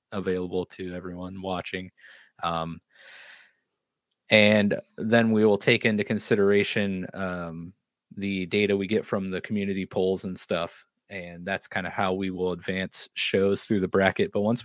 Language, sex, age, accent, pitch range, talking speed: English, male, 20-39, American, 95-115 Hz, 150 wpm